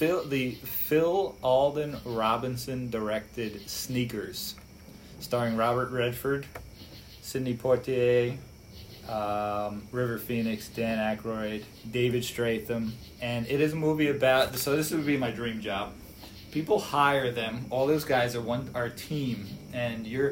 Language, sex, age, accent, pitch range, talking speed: English, male, 20-39, American, 110-135 Hz, 130 wpm